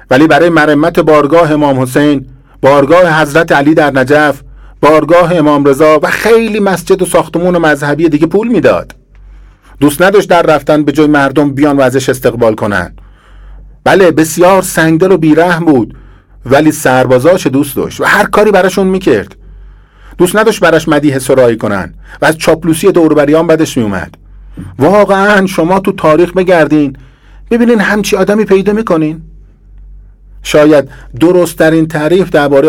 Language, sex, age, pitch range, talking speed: Persian, male, 50-69, 130-175 Hz, 145 wpm